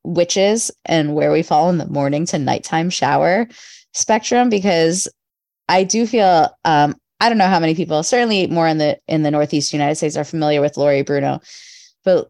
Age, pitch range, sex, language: 20-39, 145-180 Hz, female, English